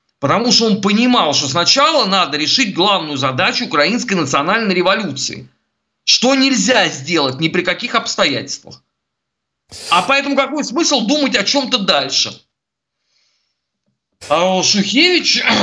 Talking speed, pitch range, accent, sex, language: 110 wpm, 150-230 Hz, native, male, Russian